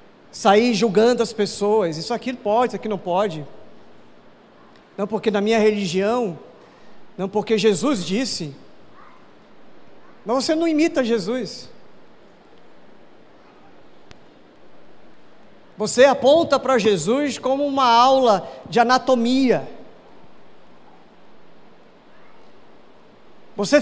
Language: Portuguese